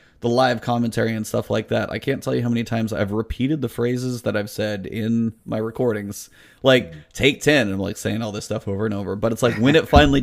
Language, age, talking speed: English, 30-49, 250 wpm